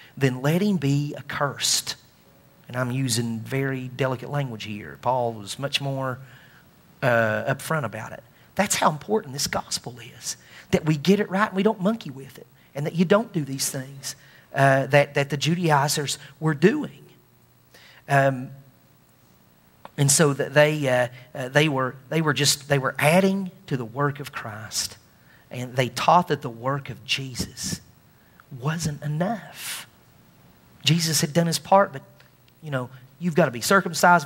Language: English